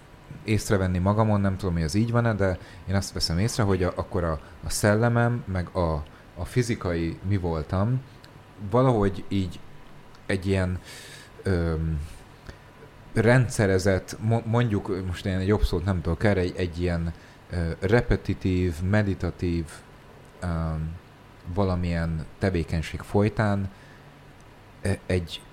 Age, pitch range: 30-49, 85-115 Hz